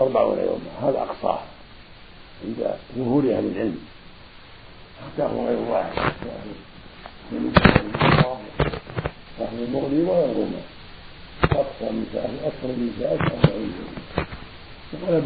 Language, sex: Arabic, male